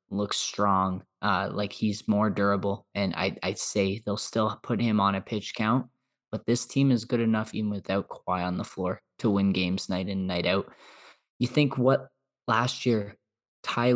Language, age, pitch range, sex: English, 20-39, 100-115 Hz, male